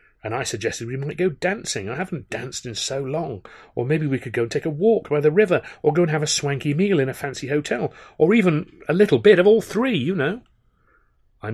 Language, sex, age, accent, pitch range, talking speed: English, male, 40-59, British, 130-185 Hz, 245 wpm